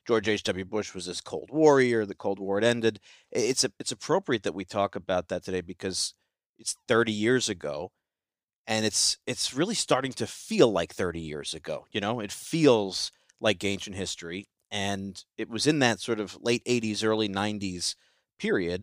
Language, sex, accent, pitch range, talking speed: English, male, American, 95-110 Hz, 180 wpm